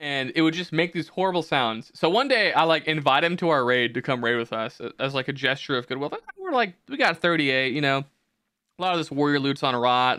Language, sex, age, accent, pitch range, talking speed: English, male, 20-39, American, 130-180 Hz, 265 wpm